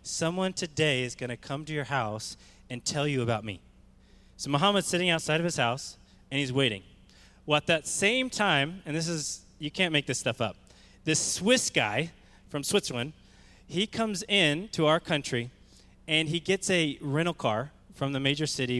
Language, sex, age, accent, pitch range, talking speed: English, male, 20-39, American, 125-170 Hz, 190 wpm